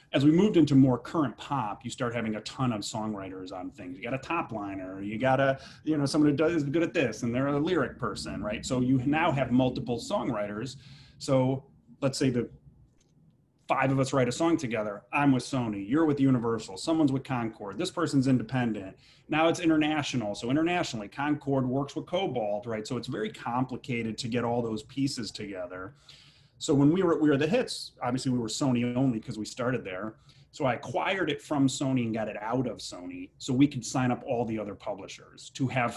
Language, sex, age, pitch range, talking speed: English, male, 30-49, 115-145 Hz, 210 wpm